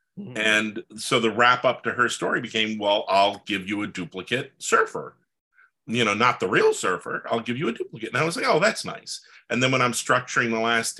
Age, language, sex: 40-59, English, male